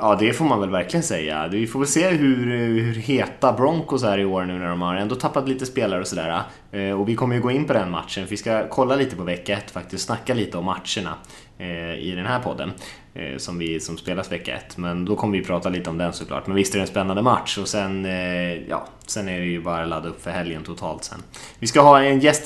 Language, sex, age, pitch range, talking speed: Swedish, male, 20-39, 100-130 Hz, 250 wpm